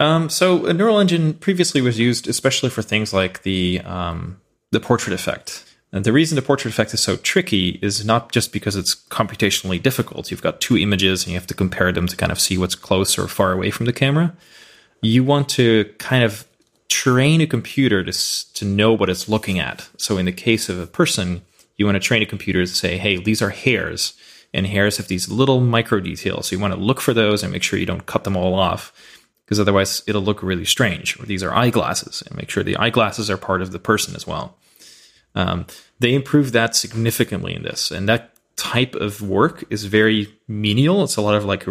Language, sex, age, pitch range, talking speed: English, male, 20-39, 95-120 Hz, 225 wpm